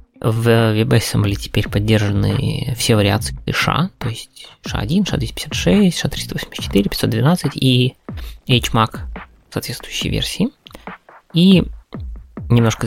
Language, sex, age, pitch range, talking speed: Russian, male, 20-39, 105-140 Hz, 105 wpm